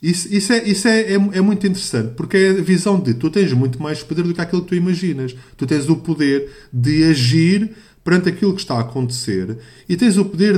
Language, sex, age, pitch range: Portuguese, male, 20-39, 130-180 Hz